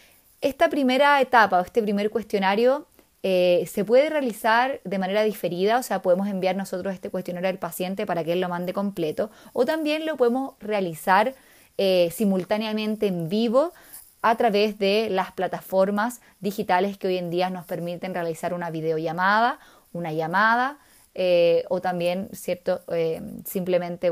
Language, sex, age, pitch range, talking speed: Spanish, female, 20-39, 175-220 Hz, 150 wpm